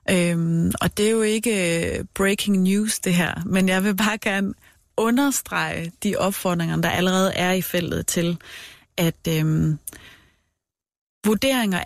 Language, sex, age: Danish, female, 30-49